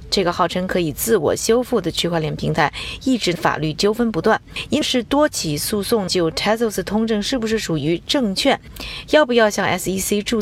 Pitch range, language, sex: 175-235 Hz, Chinese, female